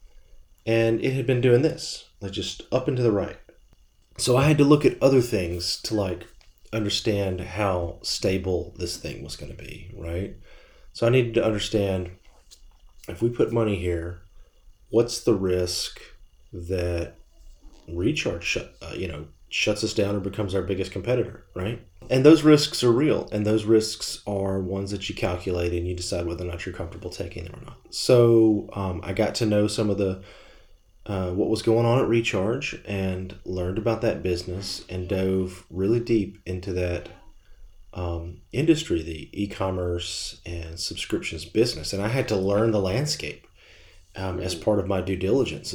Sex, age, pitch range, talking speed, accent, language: male, 30-49, 90-110 Hz, 175 wpm, American, English